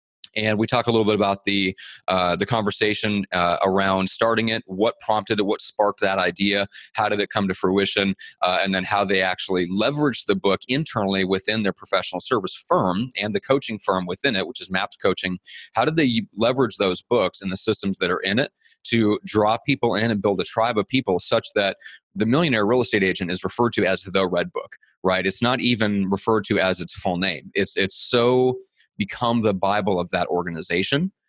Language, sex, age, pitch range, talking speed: English, male, 30-49, 95-115 Hz, 210 wpm